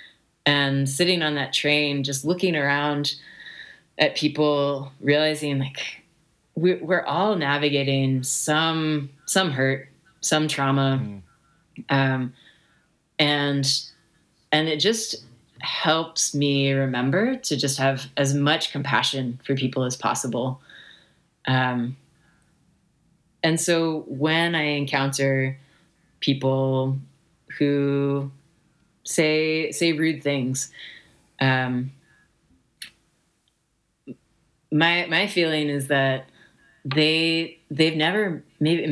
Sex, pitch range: female, 135-160 Hz